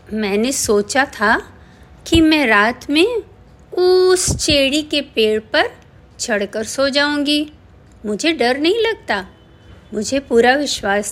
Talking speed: 120 wpm